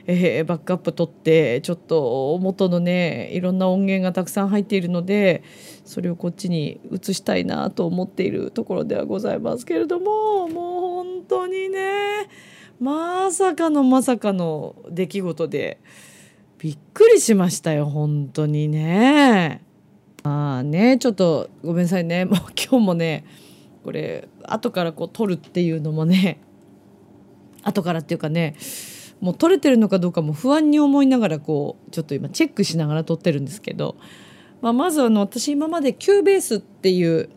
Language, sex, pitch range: Japanese, female, 165-260 Hz